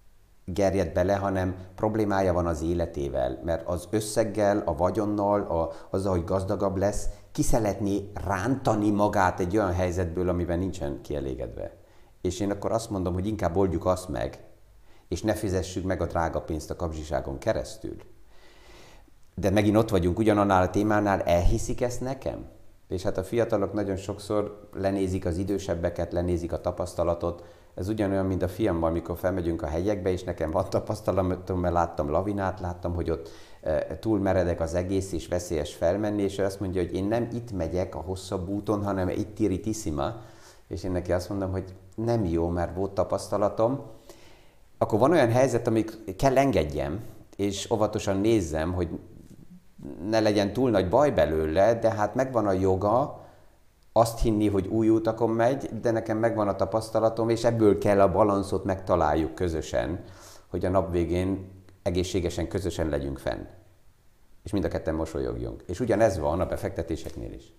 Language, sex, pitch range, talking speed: Hungarian, male, 90-105 Hz, 160 wpm